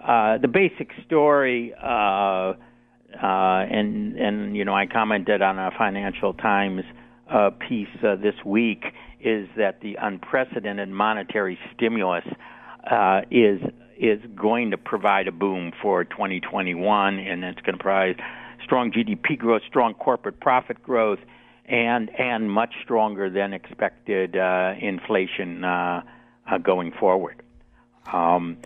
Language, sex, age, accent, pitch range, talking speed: English, male, 60-79, American, 105-140 Hz, 130 wpm